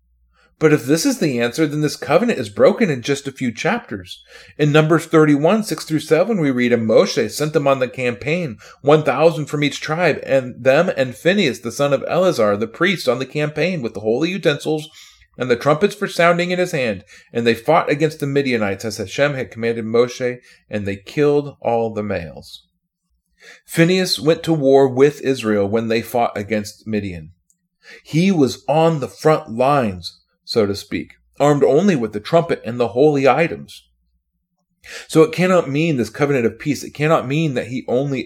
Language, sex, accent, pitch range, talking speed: English, male, American, 110-160 Hz, 190 wpm